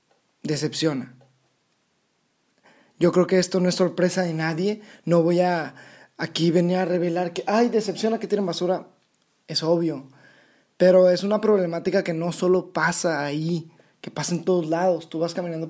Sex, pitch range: male, 150-180 Hz